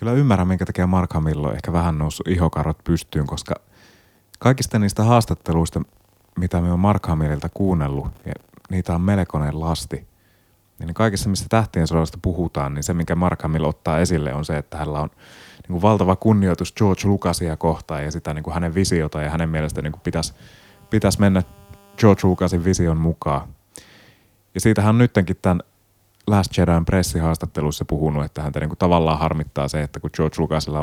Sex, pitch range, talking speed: male, 80-100 Hz, 165 wpm